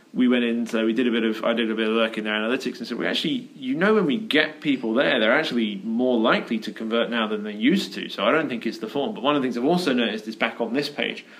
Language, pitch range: English, 115-155 Hz